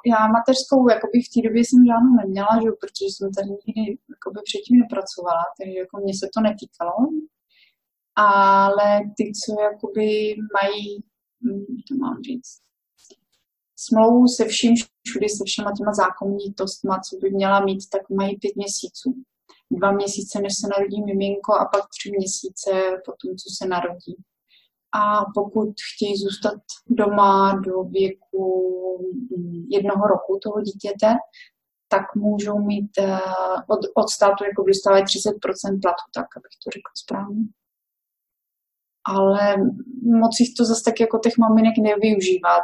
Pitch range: 190-220 Hz